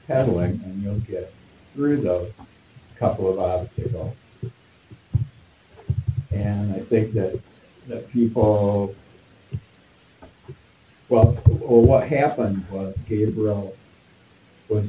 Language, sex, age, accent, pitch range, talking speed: English, male, 60-79, American, 95-115 Hz, 90 wpm